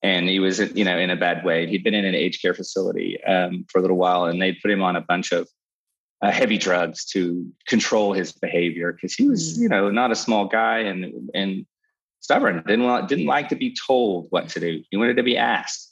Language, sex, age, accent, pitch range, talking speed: English, male, 30-49, American, 90-105 Hz, 235 wpm